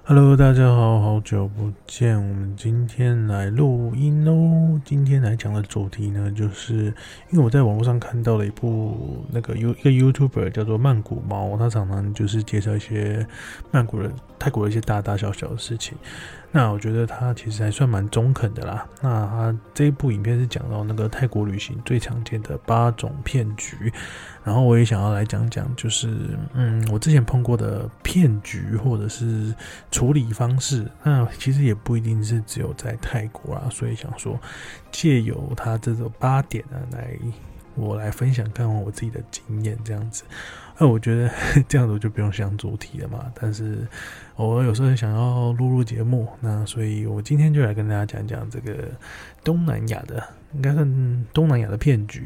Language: Chinese